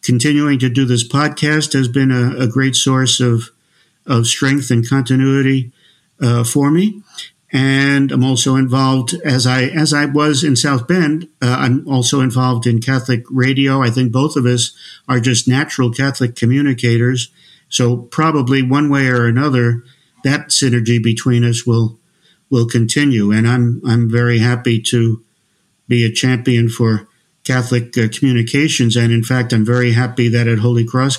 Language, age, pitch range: English, 50-69, 115-135 Hz